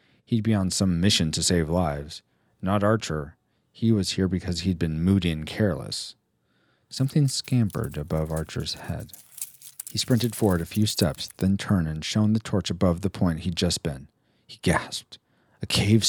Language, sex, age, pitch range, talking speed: English, male, 40-59, 85-110 Hz, 170 wpm